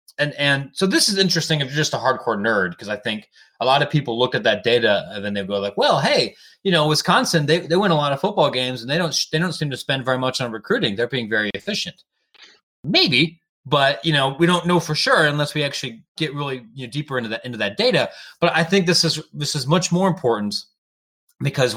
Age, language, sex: 30-49, English, male